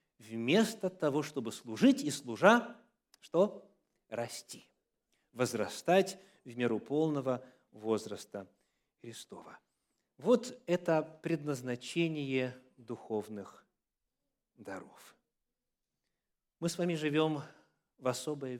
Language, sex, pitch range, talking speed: Russian, male, 125-180 Hz, 80 wpm